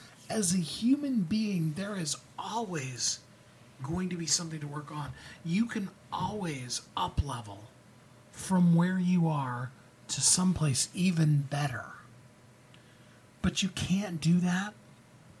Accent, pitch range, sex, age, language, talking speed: American, 125-165 Hz, male, 40-59, English, 120 wpm